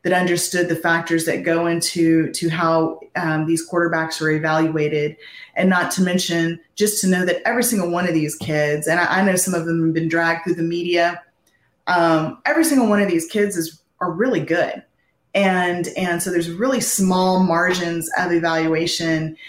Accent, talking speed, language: American, 190 wpm, English